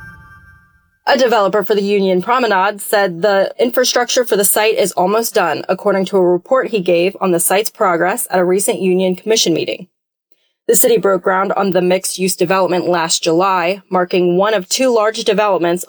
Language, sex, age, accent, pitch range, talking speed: English, female, 20-39, American, 180-215 Hz, 180 wpm